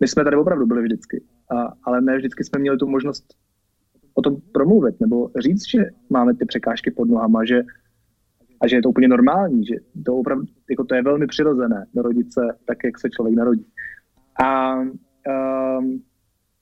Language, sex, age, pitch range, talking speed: Slovak, male, 30-49, 130-160 Hz, 175 wpm